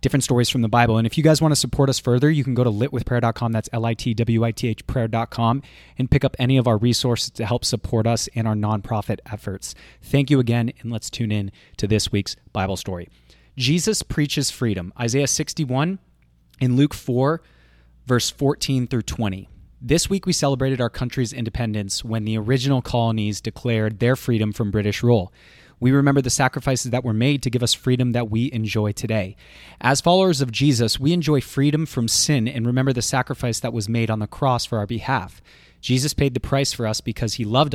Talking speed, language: 195 wpm, English